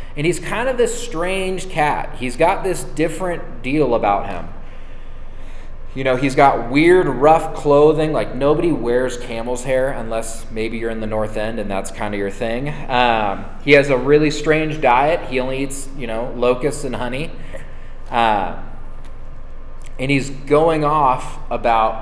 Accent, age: American, 20-39